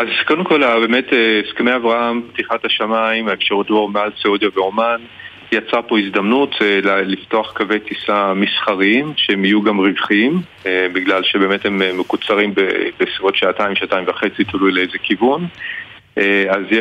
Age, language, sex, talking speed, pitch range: 40-59, Hebrew, male, 130 wpm, 100-115 Hz